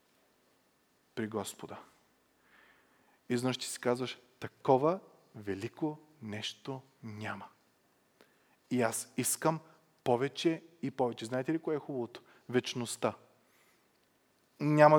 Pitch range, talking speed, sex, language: 125-160 Hz, 90 wpm, male, Bulgarian